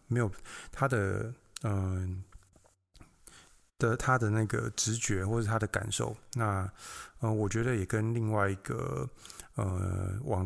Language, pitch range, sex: Chinese, 100-115 Hz, male